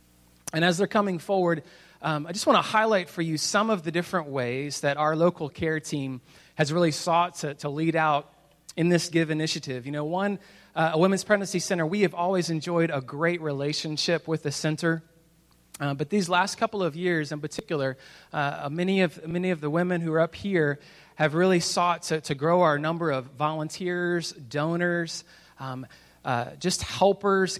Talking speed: 190 wpm